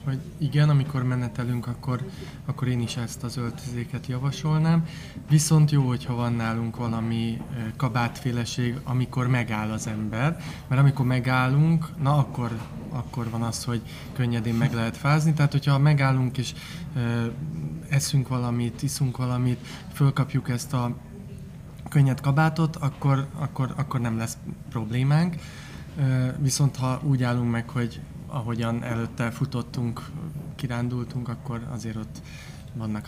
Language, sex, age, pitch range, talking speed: Hungarian, male, 20-39, 120-145 Hz, 130 wpm